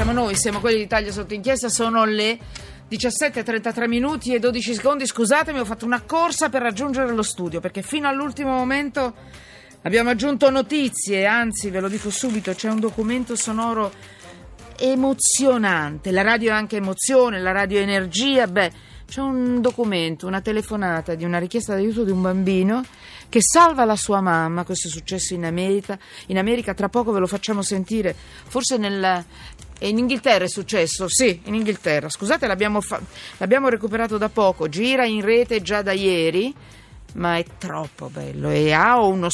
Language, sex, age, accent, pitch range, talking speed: Italian, female, 40-59, native, 190-245 Hz, 160 wpm